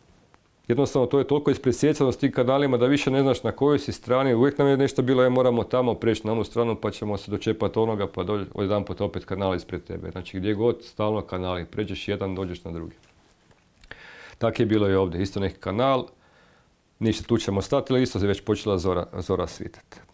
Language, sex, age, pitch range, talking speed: Croatian, male, 40-59, 95-125 Hz, 215 wpm